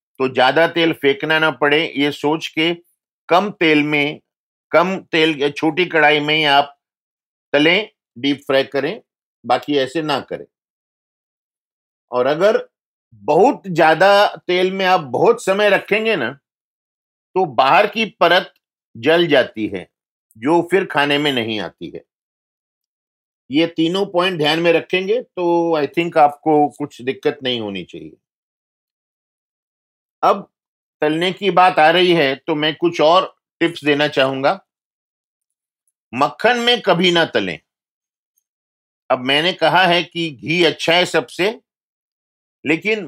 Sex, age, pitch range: male, 50-69, 145-180 Hz